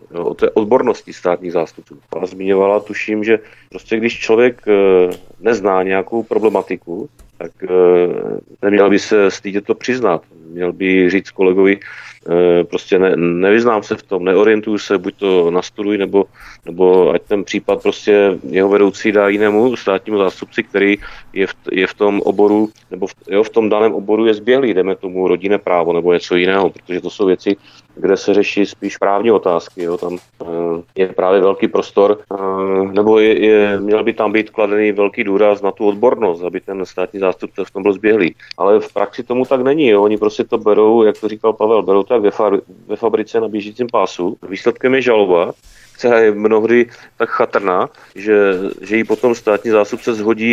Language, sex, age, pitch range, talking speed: Czech, male, 40-59, 95-110 Hz, 185 wpm